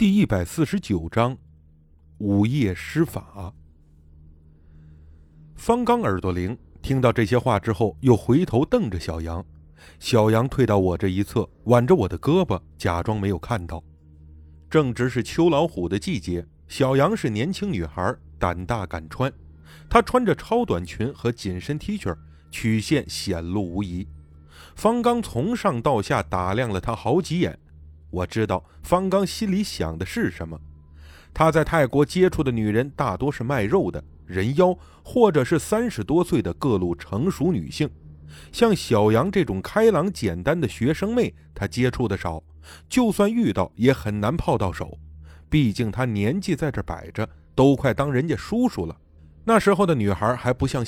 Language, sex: Chinese, male